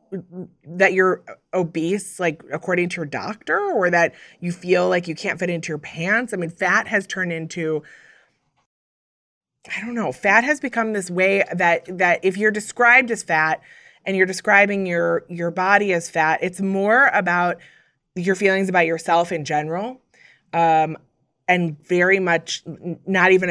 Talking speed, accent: 160 wpm, American